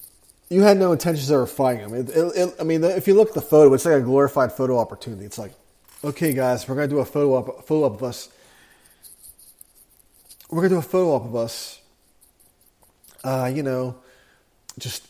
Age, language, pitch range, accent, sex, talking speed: 30-49, English, 125-165 Hz, American, male, 205 wpm